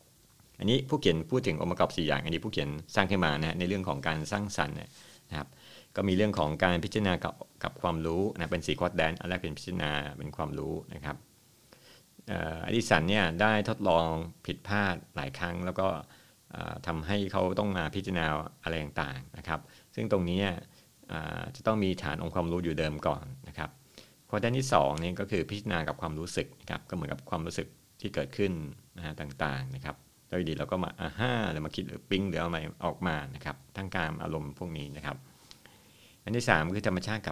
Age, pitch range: 60-79, 75-95 Hz